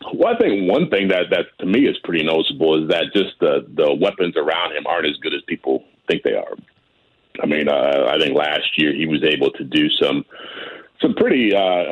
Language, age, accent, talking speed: English, 40-59, American, 220 wpm